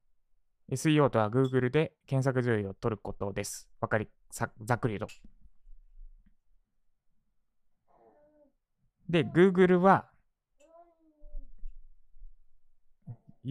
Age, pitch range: 20-39, 115-175 Hz